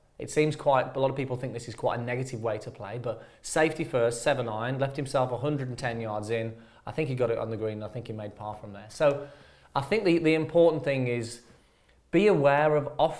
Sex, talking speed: male, 240 wpm